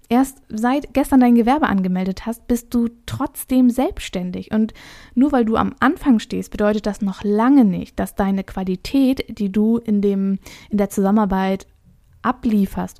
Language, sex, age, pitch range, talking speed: German, female, 20-39, 195-225 Hz, 150 wpm